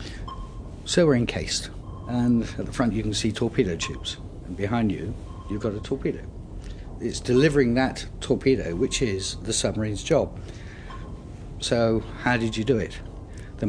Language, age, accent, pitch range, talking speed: English, 60-79, British, 95-115 Hz, 155 wpm